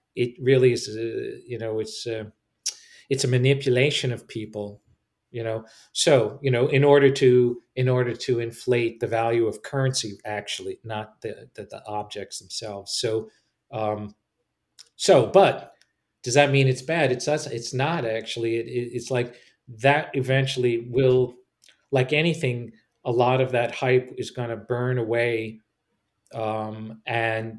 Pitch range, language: 115-135 Hz, English